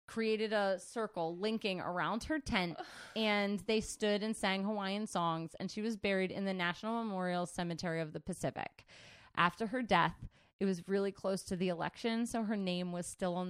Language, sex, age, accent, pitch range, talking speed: English, female, 20-39, American, 170-210 Hz, 185 wpm